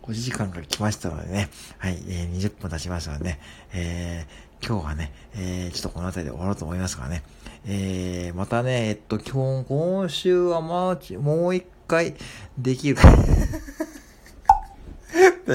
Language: Japanese